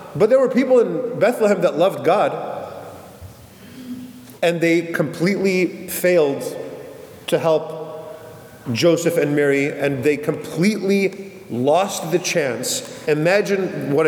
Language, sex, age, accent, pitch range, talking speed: English, male, 30-49, American, 155-210 Hz, 110 wpm